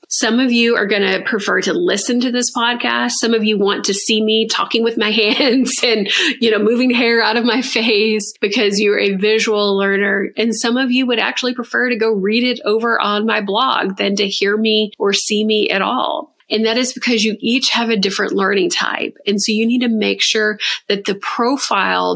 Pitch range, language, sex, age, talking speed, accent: 205-235 Hz, English, female, 30-49, 220 wpm, American